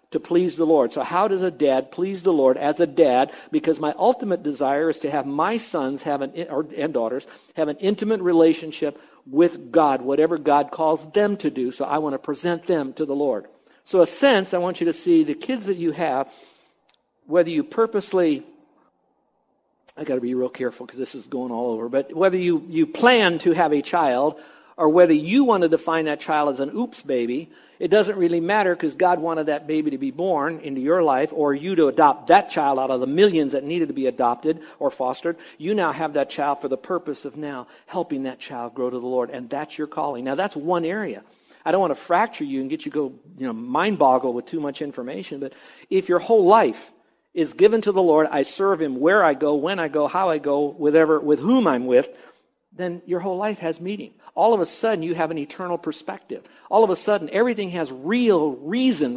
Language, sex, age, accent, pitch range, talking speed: English, male, 60-79, American, 145-195 Hz, 225 wpm